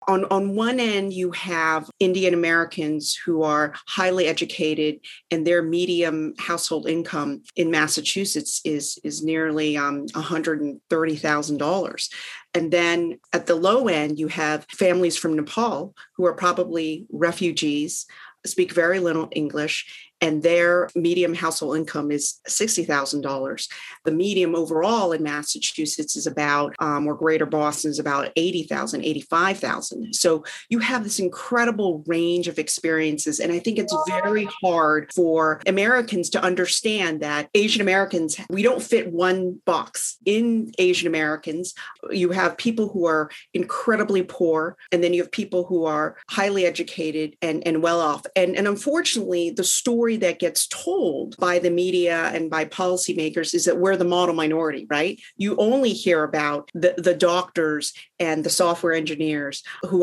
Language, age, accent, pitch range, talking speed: English, 40-59, American, 155-185 Hz, 150 wpm